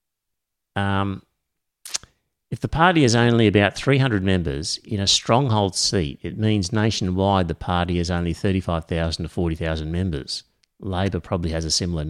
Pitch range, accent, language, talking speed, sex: 85-120 Hz, Australian, English, 145 wpm, male